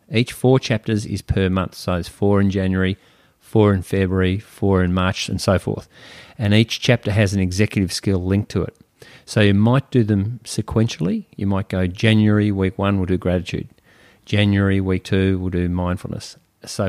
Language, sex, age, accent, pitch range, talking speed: English, male, 40-59, Australian, 95-110 Hz, 185 wpm